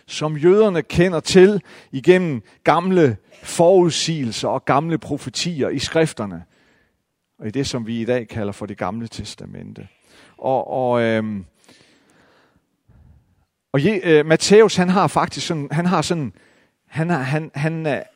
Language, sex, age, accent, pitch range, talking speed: Danish, male, 40-59, native, 125-180 Hz, 140 wpm